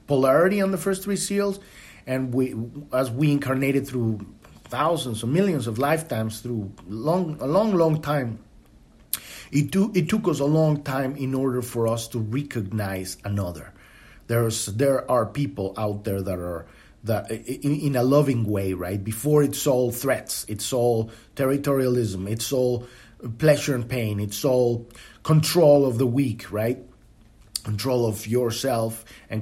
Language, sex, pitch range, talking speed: English, male, 110-145 Hz, 155 wpm